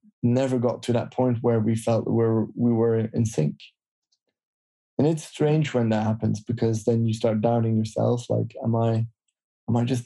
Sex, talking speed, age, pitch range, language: male, 185 wpm, 20-39, 115-135 Hz, English